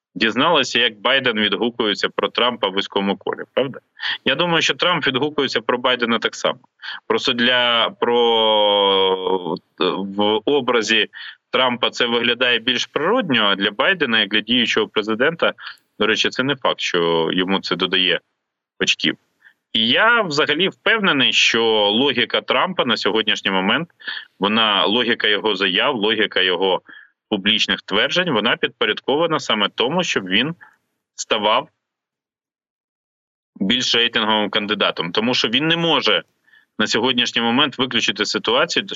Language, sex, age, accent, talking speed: Ukrainian, male, 20-39, native, 130 wpm